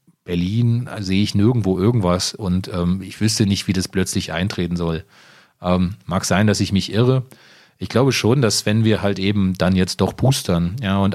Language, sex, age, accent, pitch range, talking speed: German, male, 30-49, German, 90-100 Hz, 190 wpm